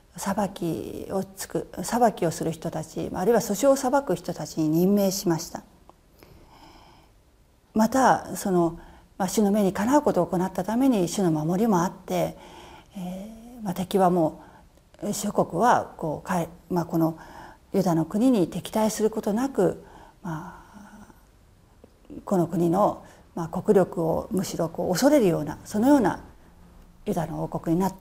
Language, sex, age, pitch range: Japanese, female, 40-59, 165-220 Hz